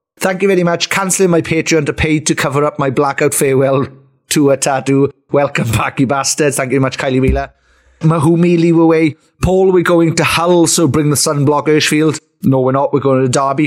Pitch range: 135-170 Hz